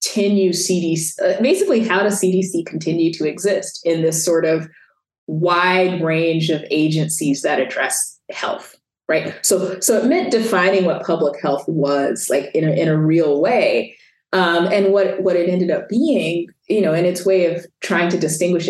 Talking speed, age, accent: 175 wpm, 20-39, American